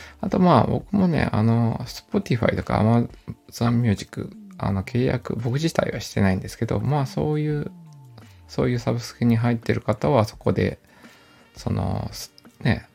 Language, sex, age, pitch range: Japanese, male, 20-39, 100-130 Hz